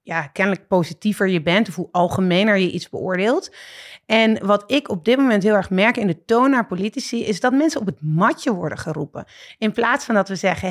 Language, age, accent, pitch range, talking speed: Dutch, 30-49, Dutch, 180-230 Hz, 220 wpm